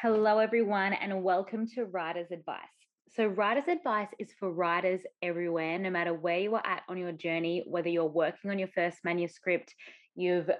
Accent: Australian